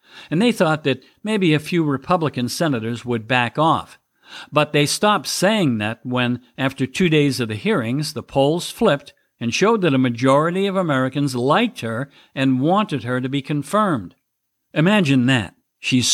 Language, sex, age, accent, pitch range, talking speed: English, male, 50-69, American, 125-175 Hz, 165 wpm